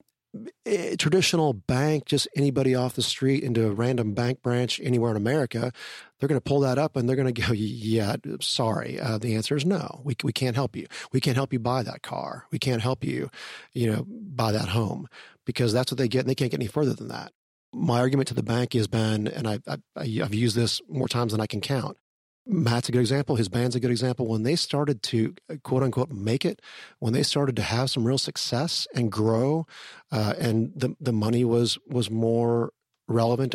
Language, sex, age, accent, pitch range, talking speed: English, male, 40-59, American, 115-140 Hz, 220 wpm